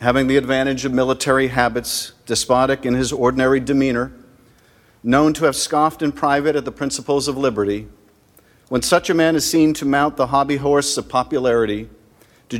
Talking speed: 170 wpm